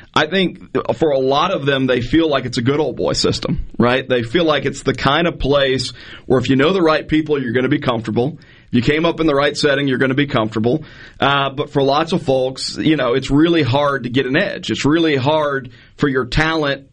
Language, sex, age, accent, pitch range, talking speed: English, male, 40-59, American, 125-160 Hz, 250 wpm